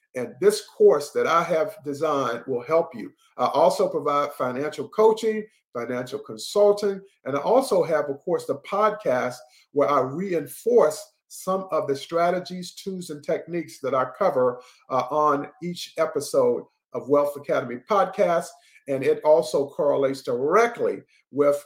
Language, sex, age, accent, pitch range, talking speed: English, male, 50-69, American, 140-205 Hz, 145 wpm